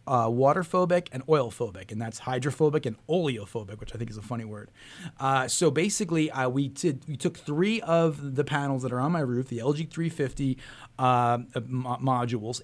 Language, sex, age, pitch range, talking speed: English, male, 30-49, 125-170 Hz, 185 wpm